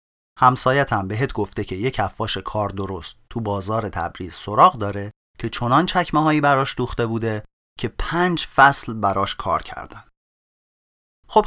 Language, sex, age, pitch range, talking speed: Persian, male, 30-49, 100-155 Hz, 145 wpm